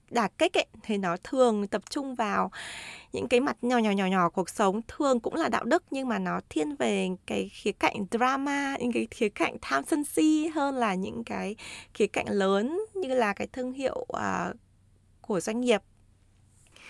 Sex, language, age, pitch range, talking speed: female, Vietnamese, 20-39, 190-250 Hz, 190 wpm